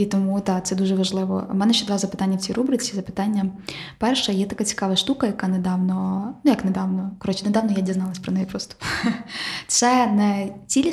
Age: 20-39